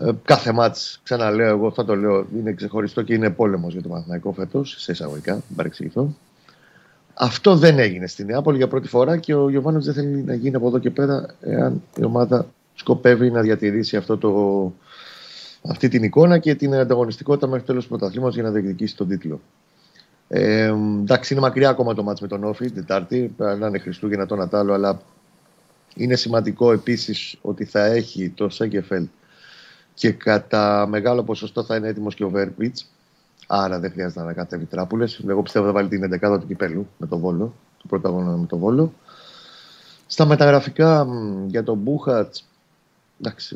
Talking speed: 170 wpm